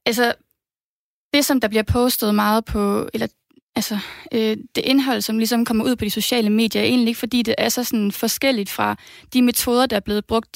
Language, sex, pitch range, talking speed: Danish, female, 200-235 Hz, 205 wpm